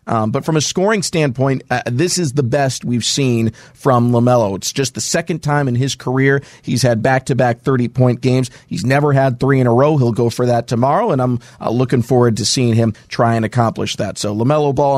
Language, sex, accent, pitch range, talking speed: English, male, American, 120-140 Hz, 220 wpm